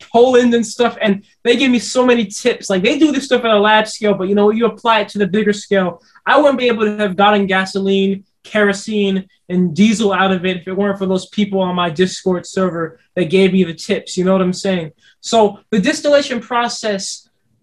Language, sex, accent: English, male, American